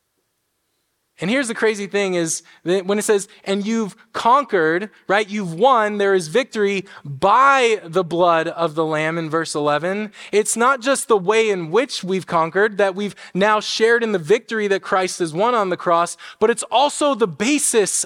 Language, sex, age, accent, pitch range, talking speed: English, male, 20-39, American, 185-225 Hz, 185 wpm